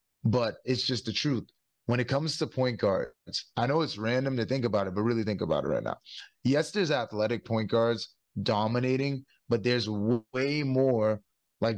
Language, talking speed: English, 190 wpm